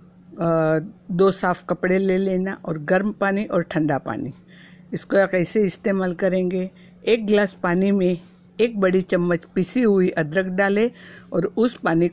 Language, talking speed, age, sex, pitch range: Hindi, 150 wpm, 60-79, female, 170-195 Hz